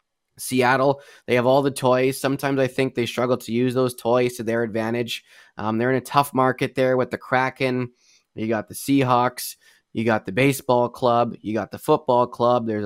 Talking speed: 200 wpm